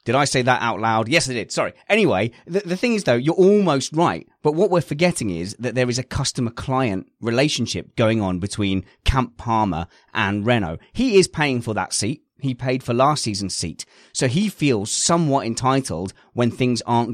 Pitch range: 105-135 Hz